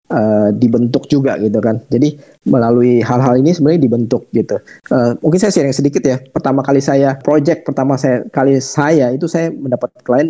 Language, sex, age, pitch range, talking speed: Indonesian, male, 20-39, 115-155 Hz, 180 wpm